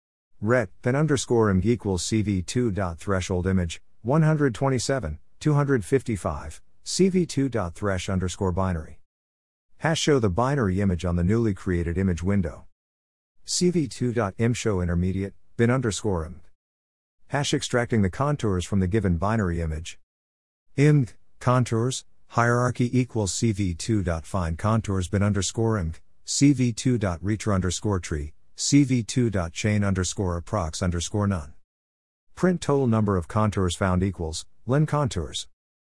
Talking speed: 105 wpm